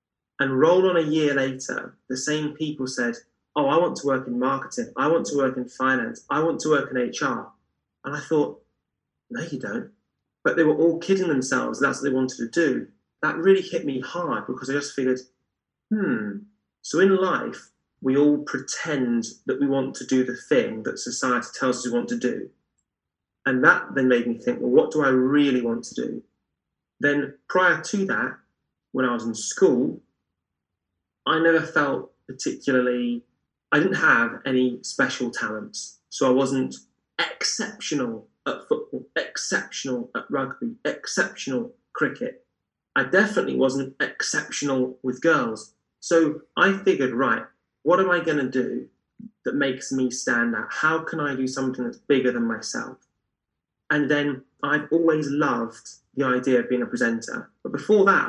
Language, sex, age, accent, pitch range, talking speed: English, male, 30-49, British, 125-160 Hz, 170 wpm